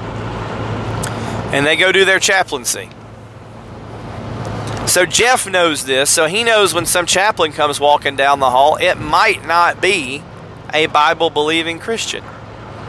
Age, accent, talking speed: 30-49, American, 130 wpm